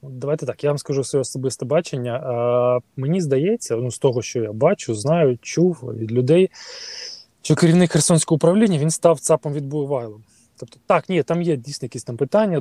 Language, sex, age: Ukrainian, male, 20-39